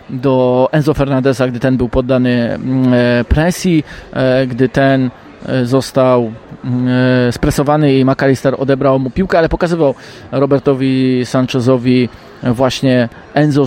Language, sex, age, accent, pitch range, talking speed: Polish, male, 20-39, native, 130-160 Hz, 100 wpm